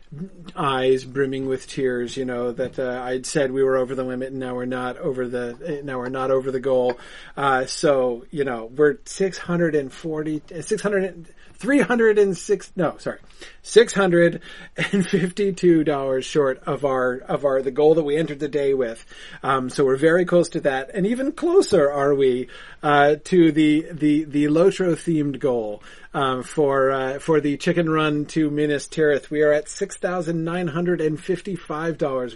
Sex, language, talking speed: male, English, 190 wpm